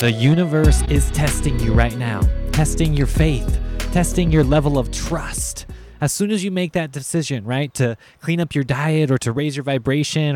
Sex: male